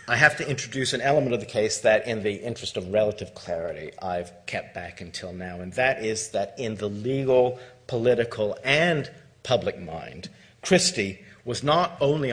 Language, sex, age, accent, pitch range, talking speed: English, male, 50-69, American, 95-120 Hz, 175 wpm